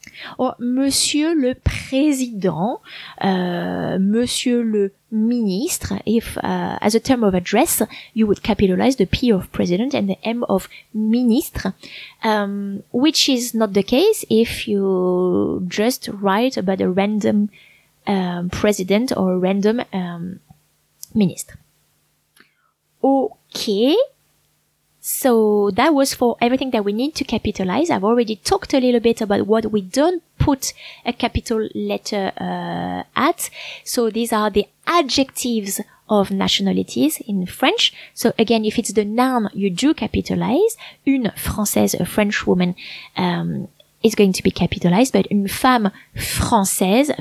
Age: 20-39